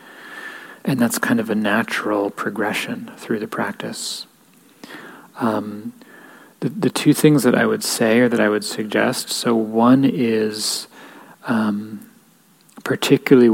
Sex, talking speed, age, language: male, 130 wpm, 30-49, English